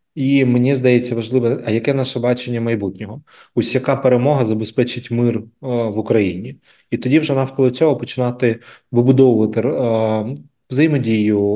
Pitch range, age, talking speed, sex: 110-130 Hz, 20-39, 135 wpm, male